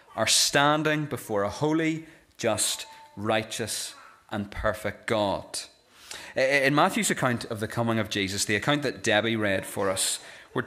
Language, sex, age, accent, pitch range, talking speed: English, male, 30-49, British, 105-140 Hz, 145 wpm